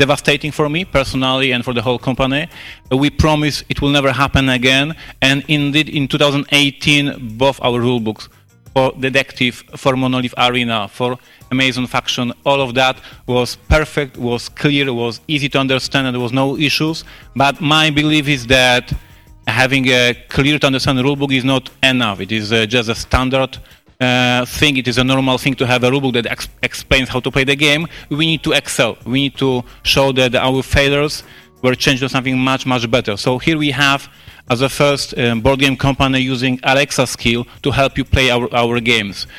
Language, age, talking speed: Polish, 30-49, 190 wpm